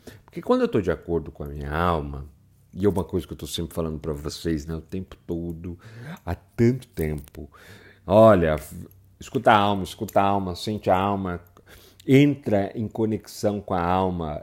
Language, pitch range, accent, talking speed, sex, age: Portuguese, 80-105 Hz, Brazilian, 180 wpm, male, 50-69